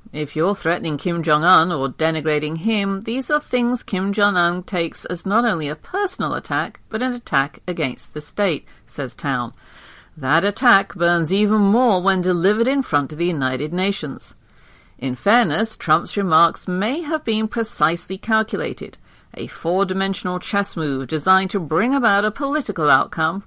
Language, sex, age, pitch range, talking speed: English, female, 50-69, 155-215 Hz, 155 wpm